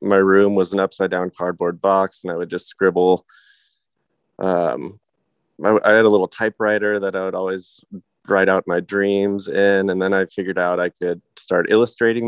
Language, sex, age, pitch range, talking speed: English, male, 20-39, 90-100 Hz, 180 wpm